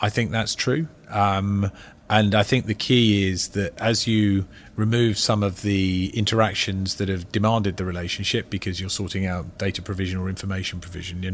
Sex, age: male, 40-59